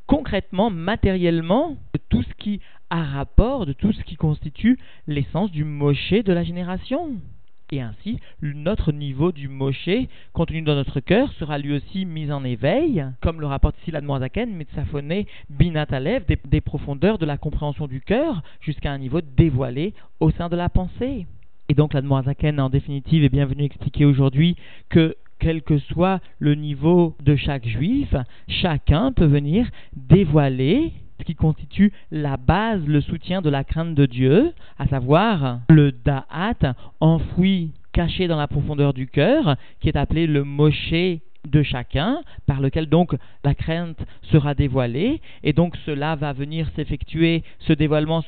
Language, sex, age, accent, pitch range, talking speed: French, male, 40-59, French, 140-170 Hz, 155 wpm